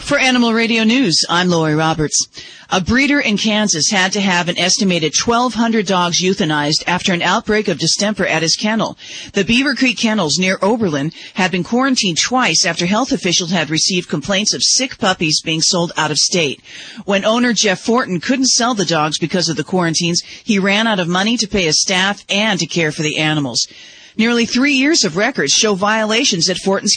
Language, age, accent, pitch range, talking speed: English, 40-59, American, 165-225 Hz, 195 wpm